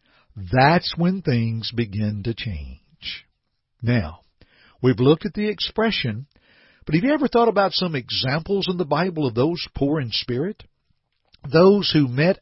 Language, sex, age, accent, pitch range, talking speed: English, male, 60-79, American, 120-175 Hz, 150 wpm